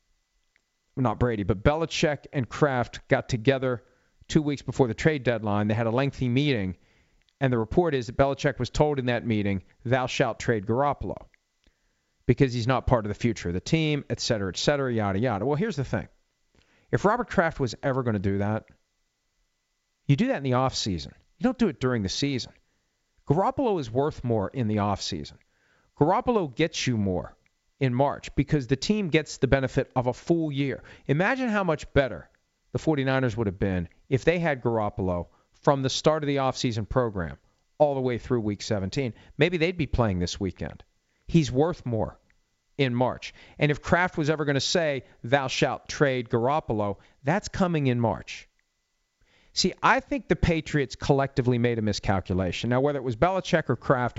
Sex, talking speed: male, 190 wpm